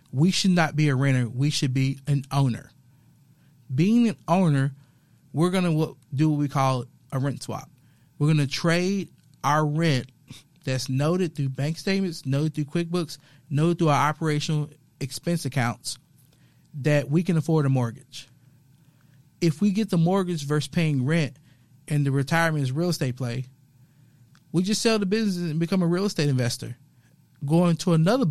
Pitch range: 135-160 Hz